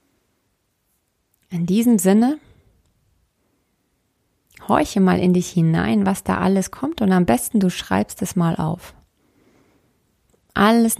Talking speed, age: 115 wpm, 30-49